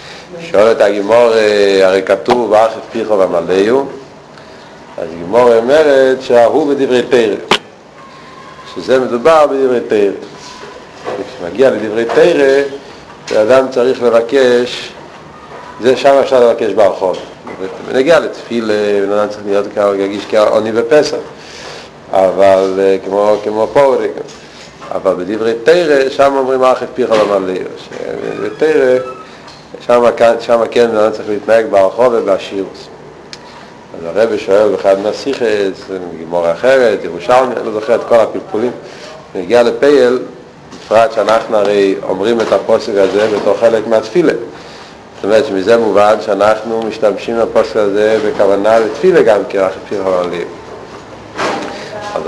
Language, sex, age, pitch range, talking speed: Hebrew, male, 50-69, 100-130 Hz, 115 wpm